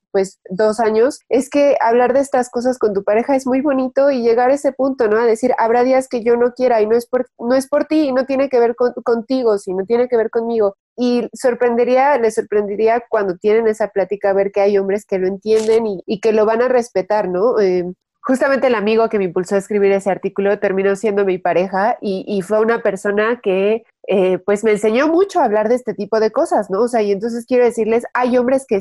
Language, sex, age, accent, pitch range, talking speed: Spanish, female, 30-49, Mexican, 200-240 Hz, 240 wpm